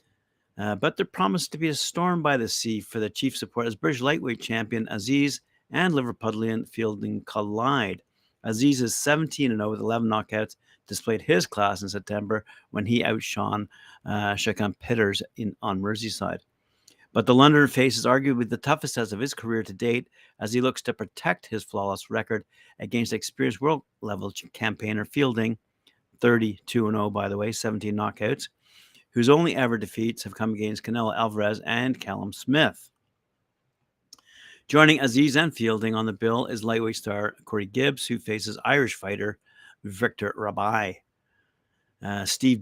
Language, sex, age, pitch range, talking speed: English, male, 50-69, 105-125 Hz, 150 wpm